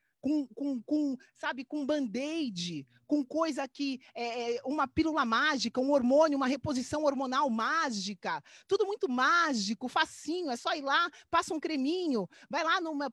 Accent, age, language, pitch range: Brazilian, 30-49, Portuguese, 220-305 Hz